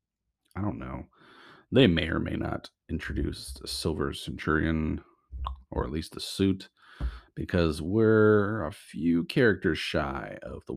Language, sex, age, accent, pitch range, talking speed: English, male, 30-49, American, 80-100 Hz, 140 wpm